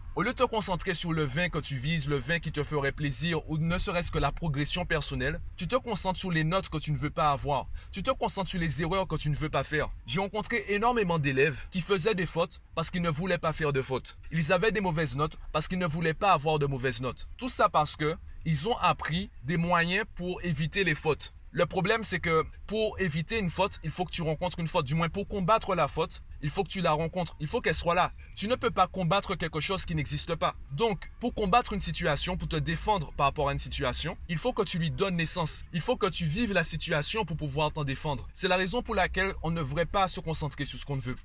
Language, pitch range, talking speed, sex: French, 150-190 Hz, 260 wpm, male